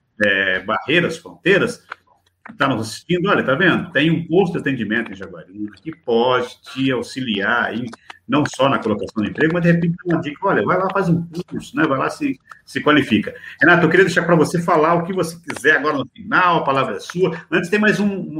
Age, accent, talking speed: 50-69, Brazilian, 220 wpm